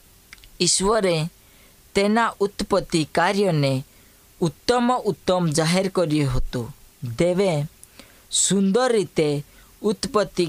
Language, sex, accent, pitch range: Hindi, female, native, 145-200 Hz